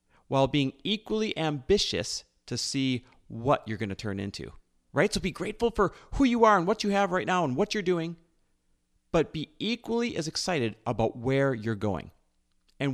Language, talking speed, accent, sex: English, 185 wpm, American, male